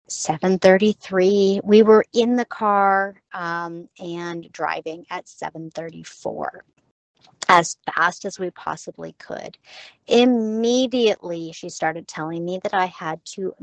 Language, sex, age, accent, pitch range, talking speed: English, female, 40-59, American, 170-230 Hz, 115 wpm